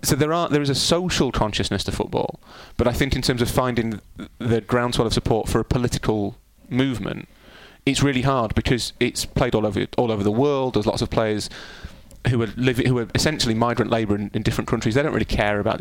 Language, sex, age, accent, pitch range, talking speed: English, male, 30-49, British, 110-130 Hz, 225 wpm